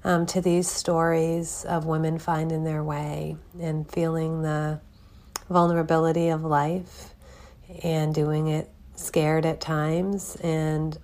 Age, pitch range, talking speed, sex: 40-59, 135-160 Hz, 120 wpm, female